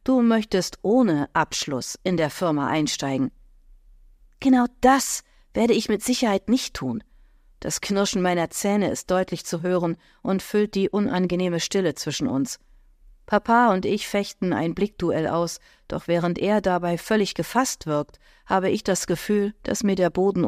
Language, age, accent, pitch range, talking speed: German, 40-59, German, 170-215 Hz, 155 wpm